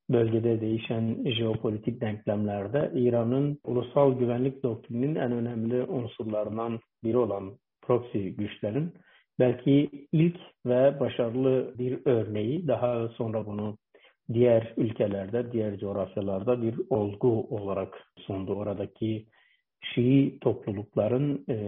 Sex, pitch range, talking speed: male, 110-135 Hz, 95 wpm